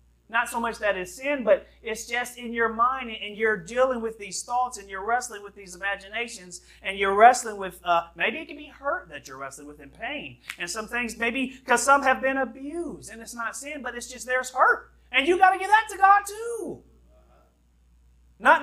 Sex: male